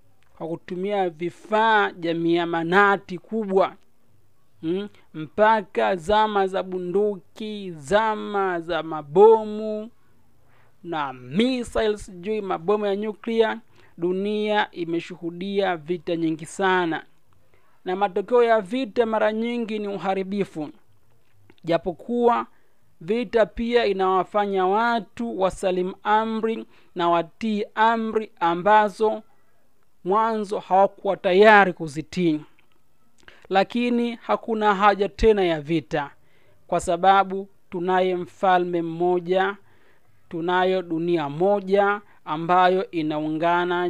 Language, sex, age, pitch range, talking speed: Swahili, male, 40-59, 170-210 Hz, 85 wpm